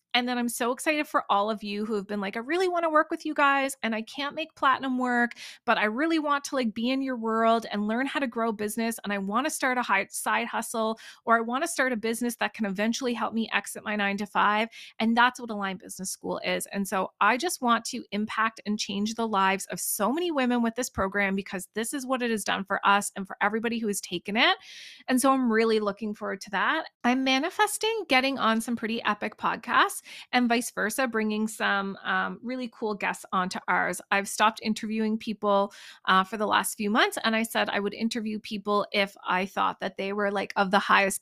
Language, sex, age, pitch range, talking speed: English, female, 20-39, 200-245 Hz, 235 wpm